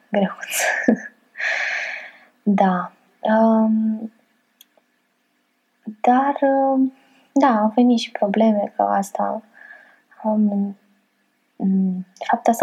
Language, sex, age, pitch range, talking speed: Romanian, female, 20-39, 200-245 Hz, 60 wpm